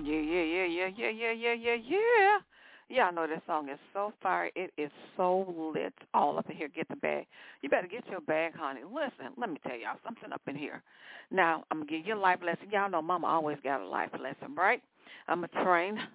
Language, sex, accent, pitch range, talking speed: English, female, American, 170-245 Hz, 235 wpm